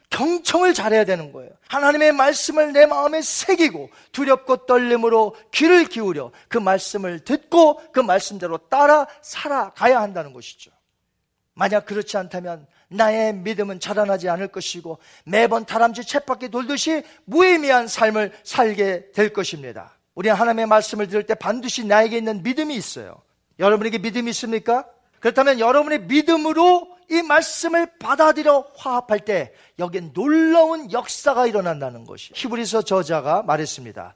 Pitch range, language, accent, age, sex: 200-285 Hz, Korean, native, 40-59, male